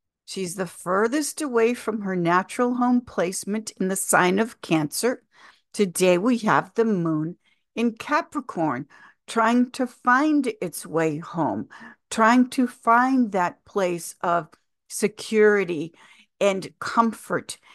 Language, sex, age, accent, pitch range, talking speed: English, female, 60-79, American, 185-240 Hz, 120 wpm